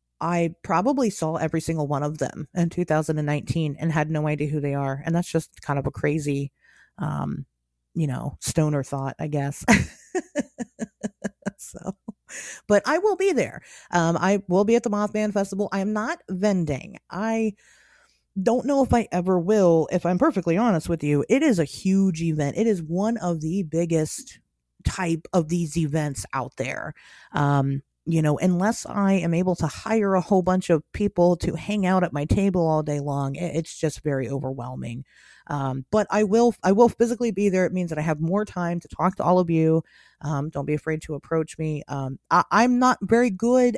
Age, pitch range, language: 30-49, 150-205 Hz, English